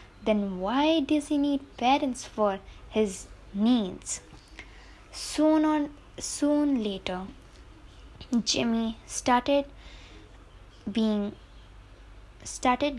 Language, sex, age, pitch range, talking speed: English, female, 20-39, 195-255 Hz, 80 wpm